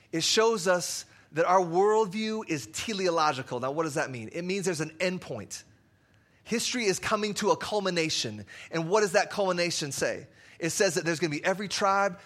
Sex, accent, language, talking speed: male, American, English, 195 wpm